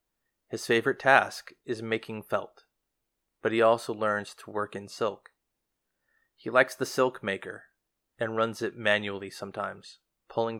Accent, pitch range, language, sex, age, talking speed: American, 105-115 Hz, English, male, 30-49, 140 wpm